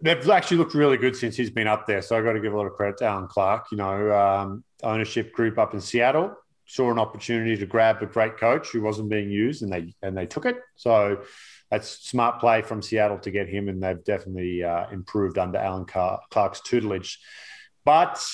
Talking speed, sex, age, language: 220 wpm, male, 30-49, English